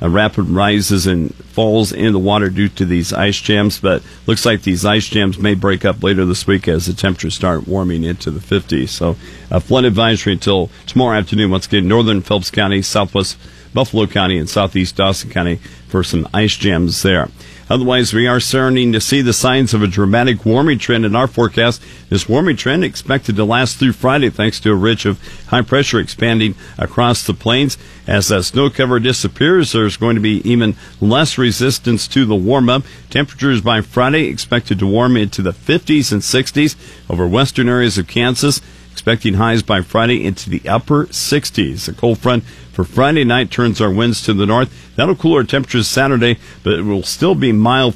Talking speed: 190 wpm